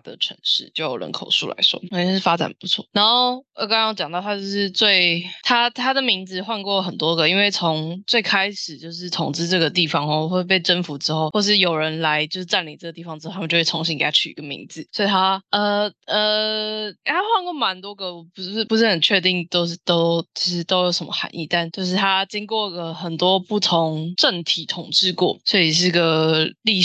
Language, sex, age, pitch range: Chinese, female, 20-39, 170-215 Hz